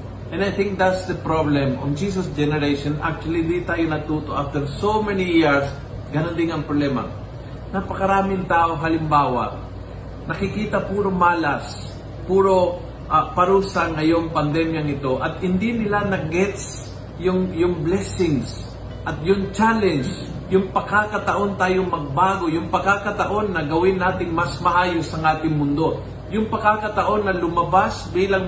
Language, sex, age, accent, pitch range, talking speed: Filipino, male, 50-69, native, 140-185 Hz, 135 wpm